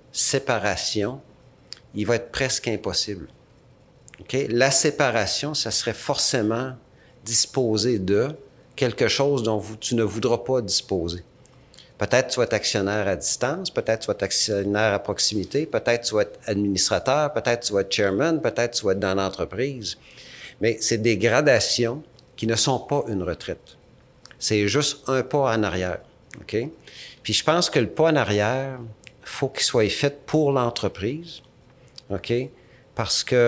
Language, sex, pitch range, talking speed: French, male, 105-130 Hz, 150 wpm